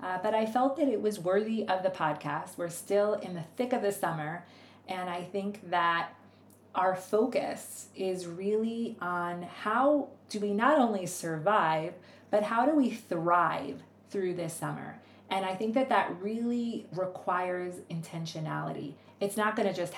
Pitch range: 170-205 Hz